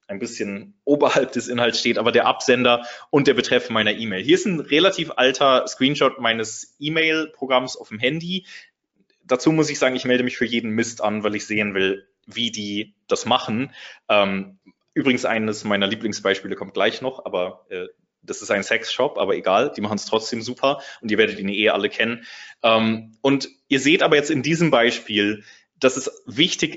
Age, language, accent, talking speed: 20-39, German, German, 180 wpm